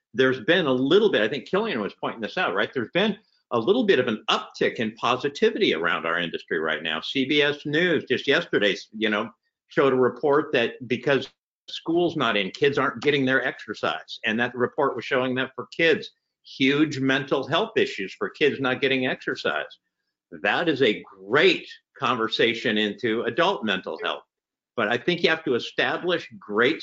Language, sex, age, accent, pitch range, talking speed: English, male, 50-69, American, 125-175 Hz, 180 wpm